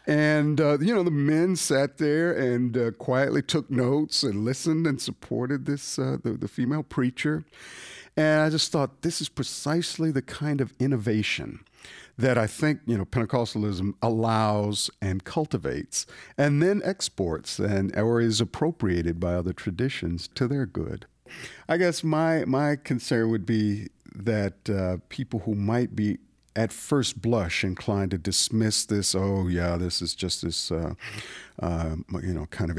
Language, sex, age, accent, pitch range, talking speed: English, male, 50-69, American, 95-140 Hz, 160 wpm